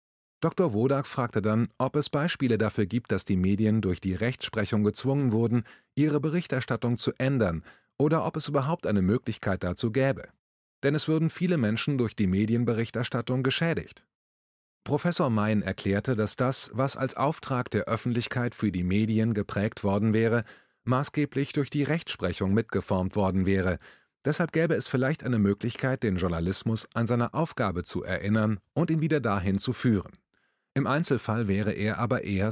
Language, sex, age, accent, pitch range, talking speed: German, male, 30-49, German, 100-135 Hz, 160 wpm